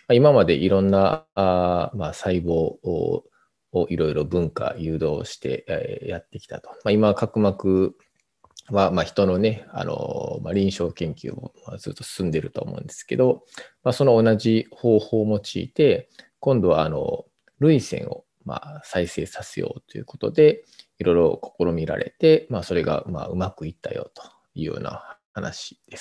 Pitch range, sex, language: 95-135 Hz, male, Japanese